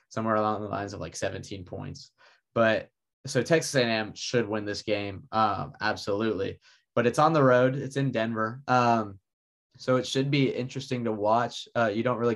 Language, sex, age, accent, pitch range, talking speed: English, male, 10-29, American, 110-125 Hz, 185 wpm